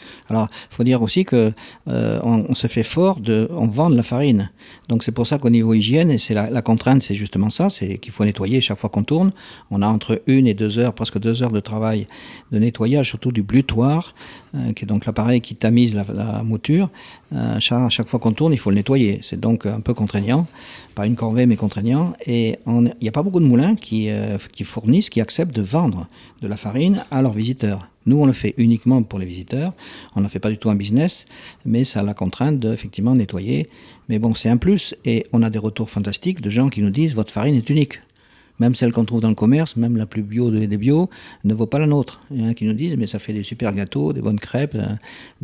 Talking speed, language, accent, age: 255 wpm, French, French, 50-69